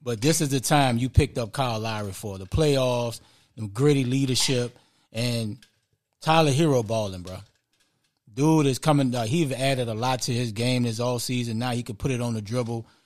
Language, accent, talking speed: English, American, 200 wpm